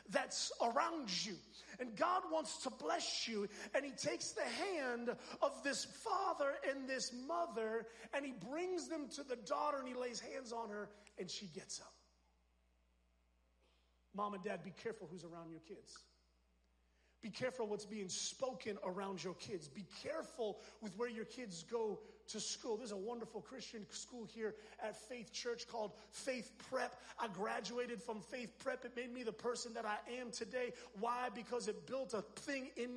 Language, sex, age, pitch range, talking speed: English, male, 30-49, 210-260 Hz, 175 wpm